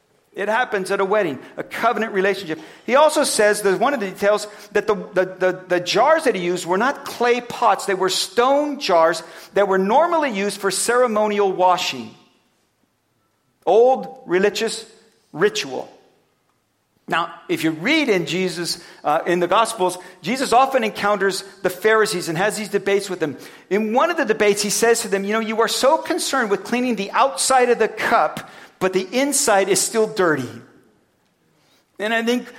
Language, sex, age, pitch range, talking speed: English, male, 50-69, 165-220 Hz, 170 wpm